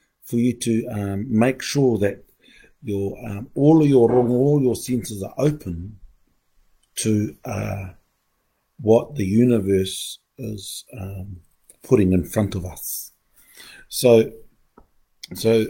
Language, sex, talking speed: English, male, 120 wpm